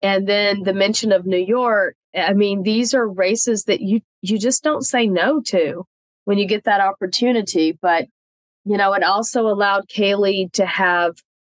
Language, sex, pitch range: English, female, 170-205 Hz